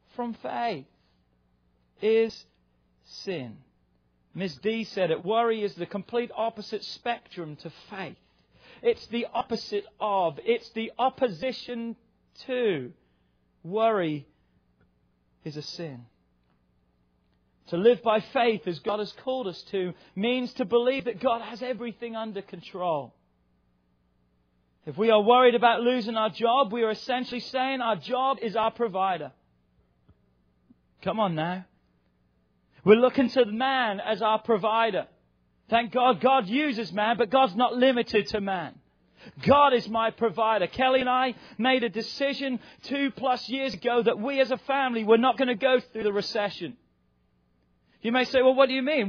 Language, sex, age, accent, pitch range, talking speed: English, male, 40-59, British, 170-255 Hz, 145 wpm